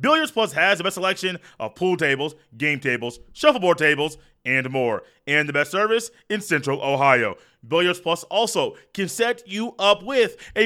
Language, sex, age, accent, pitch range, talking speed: English, male, 30-49, American, 165-230 Hz, 175 wpm